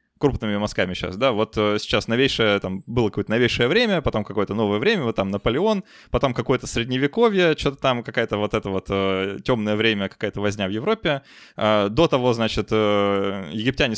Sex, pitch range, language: male, 100-130 Hz, Russian